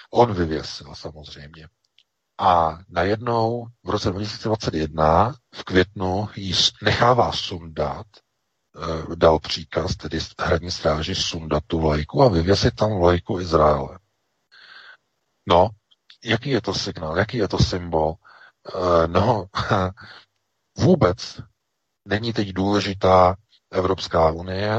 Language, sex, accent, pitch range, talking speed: Czech, male, native, 85-100 Hz, 100 wpm